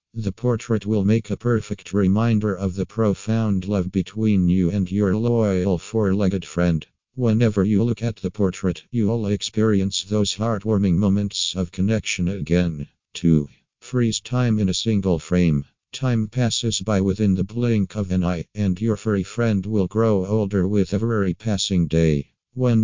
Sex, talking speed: male, 160 wpm